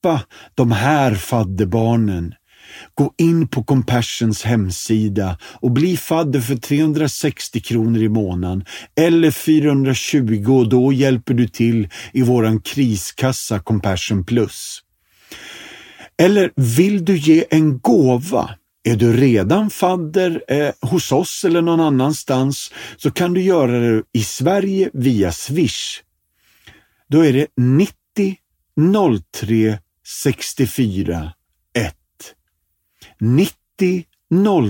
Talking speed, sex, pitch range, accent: 105 wpm, male, 110-145 Hz, native